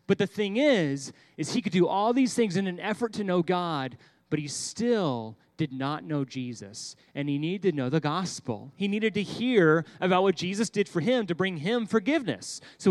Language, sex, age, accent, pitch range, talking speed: English, male, 30-49, American, 150-220 Hz, 215 wpm